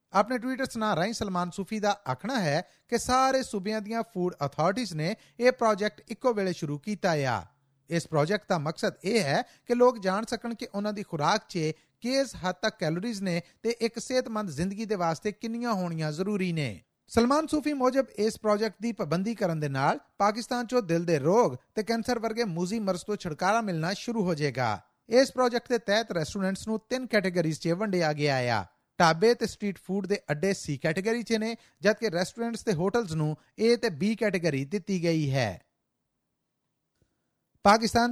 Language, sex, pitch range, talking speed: Punjabi, male, 170-225 Hz, 165 wpm